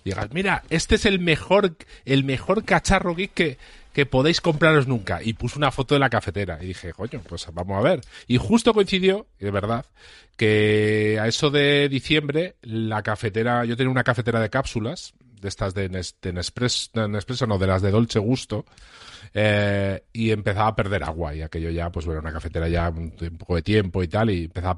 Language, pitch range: Spanish, 100-125 Hz